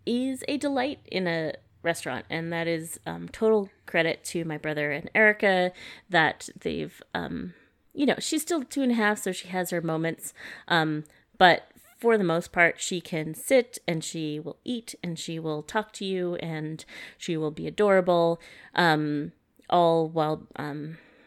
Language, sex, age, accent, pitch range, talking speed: English, female, 30-49, American, 165-235 Hz, 170 wpm